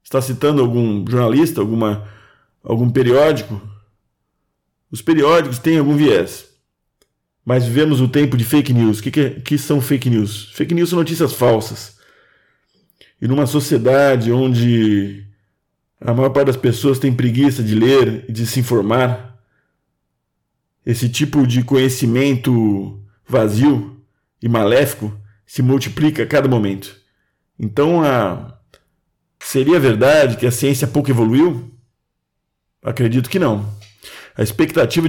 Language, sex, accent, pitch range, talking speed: Portuguese, male, Brazilian, 110-135 Hz, 125 wpm